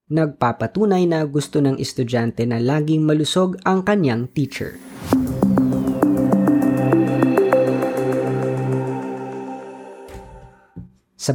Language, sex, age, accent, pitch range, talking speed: Filipino, female, 20-39, native, 120-155 Hz, 65 wpm